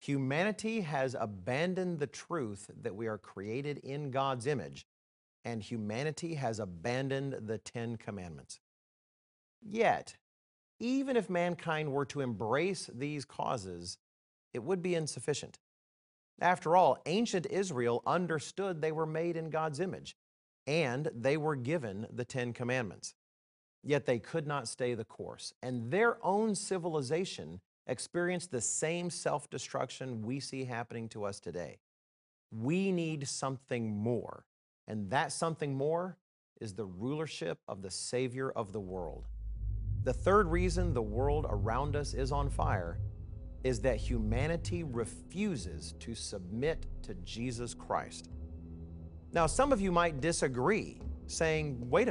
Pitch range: 100-160 Hz